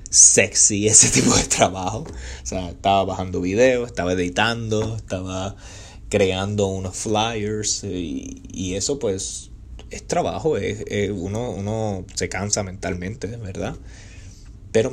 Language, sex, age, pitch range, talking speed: Spanish, male, 20-39, 95-115 Hz, 115 wpm